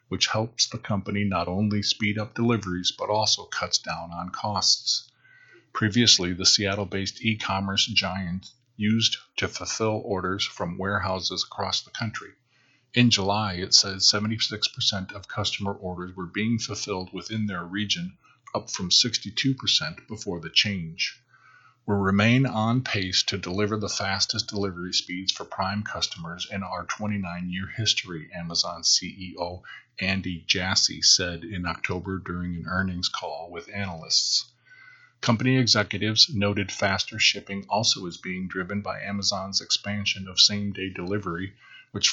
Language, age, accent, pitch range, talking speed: English, 40-59, American, 95-110 Hz, 135 wpm